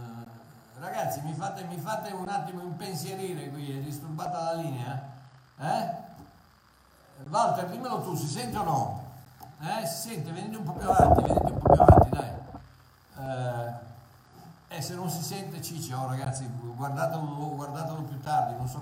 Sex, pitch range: male, 130-160 Hz